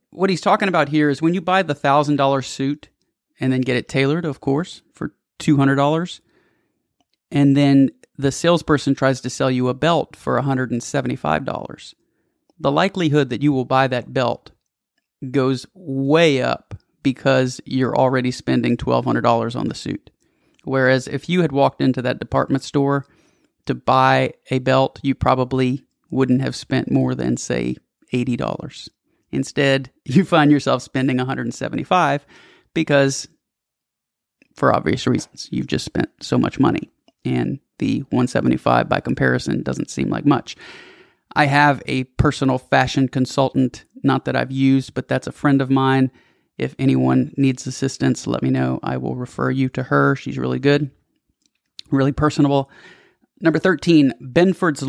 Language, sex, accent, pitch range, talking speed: English, male, American, 130-145 Hz, 150 wpm